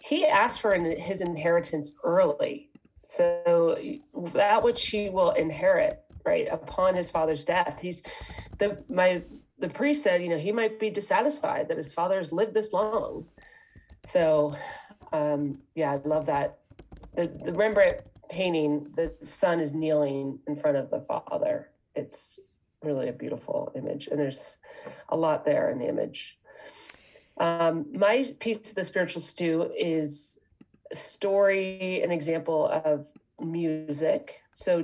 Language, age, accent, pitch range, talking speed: English, 30-49, American, 165-230 Hz, 145 wpm